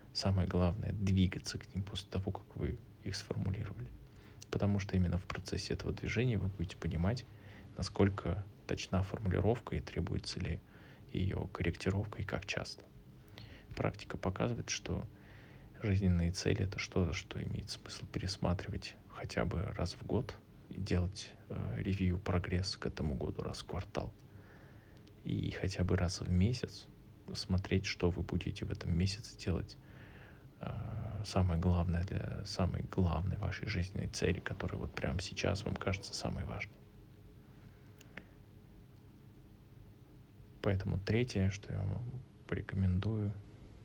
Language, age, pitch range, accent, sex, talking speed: Russian, 20-39, 95-110 Hz, native, male, 135 wpm